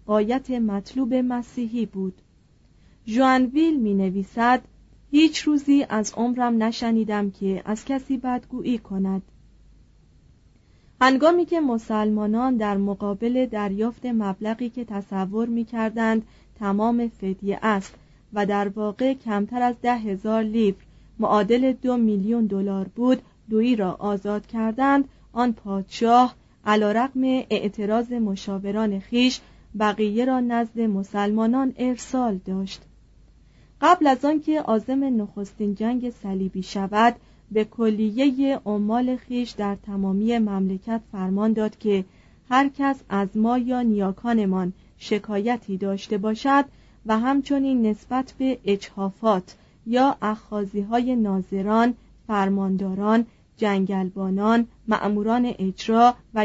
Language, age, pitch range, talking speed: Persian, 40-59, 205-245 Hz, 105 wpm